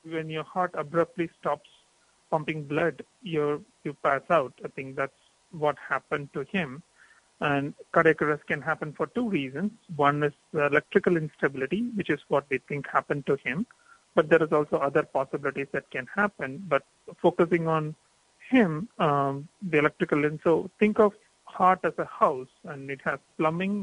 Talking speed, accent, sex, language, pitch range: 170 wpm, Indian, male, English, 145-185 Hz